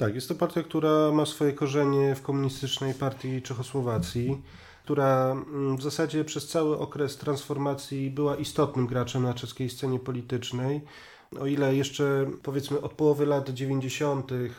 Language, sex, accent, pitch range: Polish, male, native, 135-150 Hz